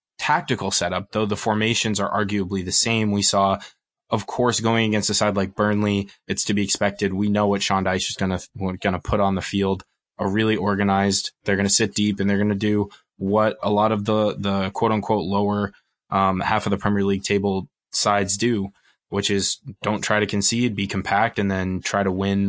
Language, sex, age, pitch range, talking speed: English, male, 20-39, 95-110 Hz, 215 wpm